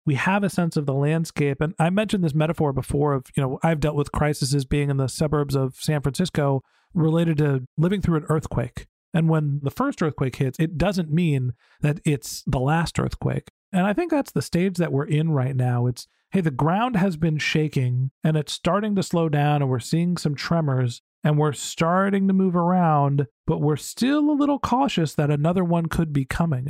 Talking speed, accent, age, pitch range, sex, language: 210 wpm, American, 40-59, 140-170 Hz, male, English